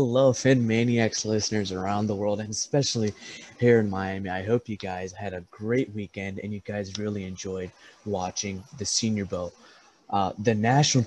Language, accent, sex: English, American, male